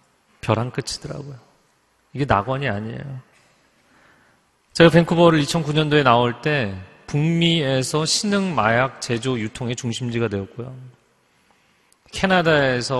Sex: male